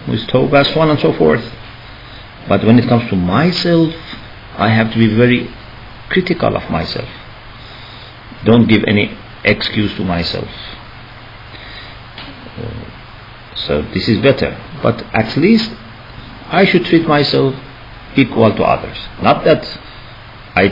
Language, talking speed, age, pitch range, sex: English, 125 wpm, 50-69, 105-125 Hz, male